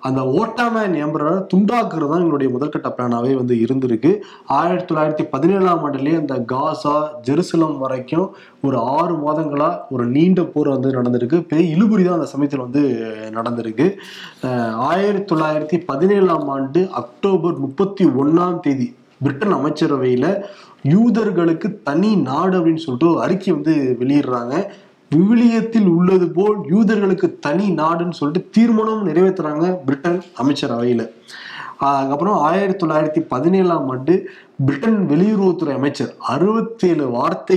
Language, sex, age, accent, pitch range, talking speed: Tamil, male, 20-39, native, 140-190 Hz, 110 wpm